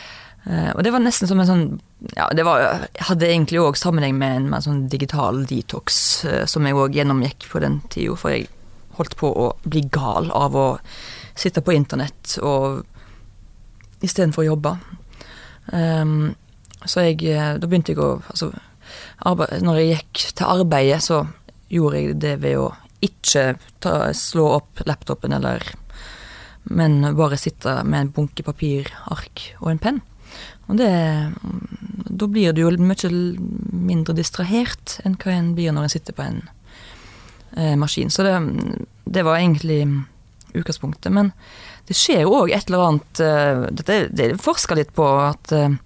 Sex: female